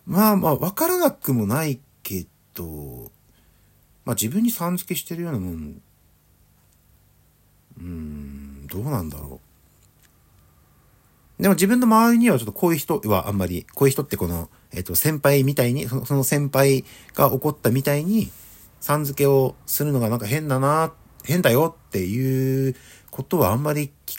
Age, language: 50-69, Japanese